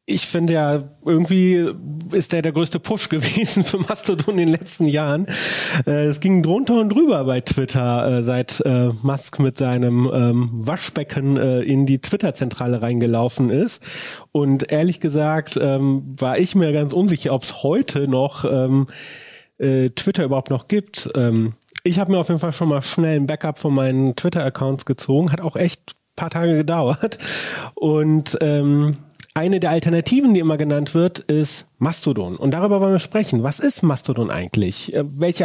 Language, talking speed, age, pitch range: German, 170 wpm, 30-49, 135-175 Hz